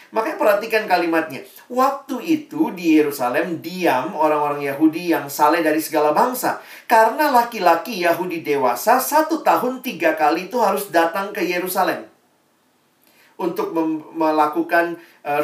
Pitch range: 155-225 Hz